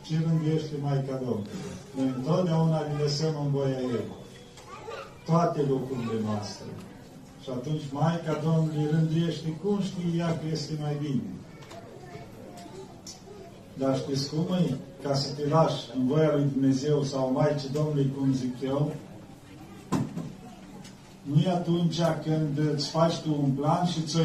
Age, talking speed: 40-59, 135 wpm